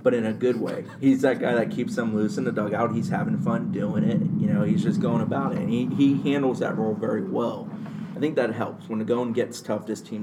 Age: 30-49